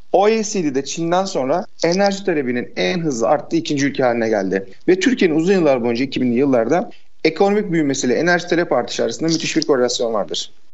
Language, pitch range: Turkish, 135-180 Hz